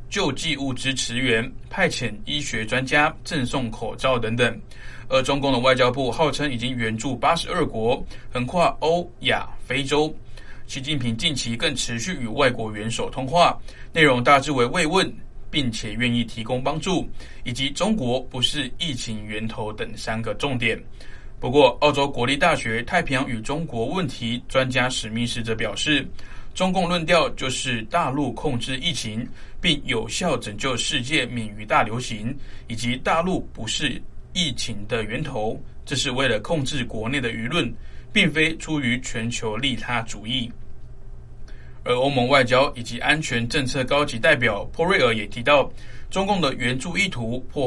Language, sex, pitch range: Chinese, male, 115-145 Hz